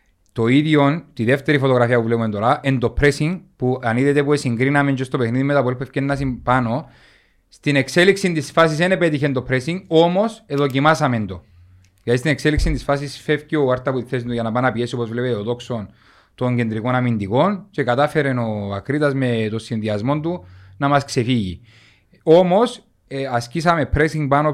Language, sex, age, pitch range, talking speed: Greek, male, 30-49, 120-150 Hz, 180 wpm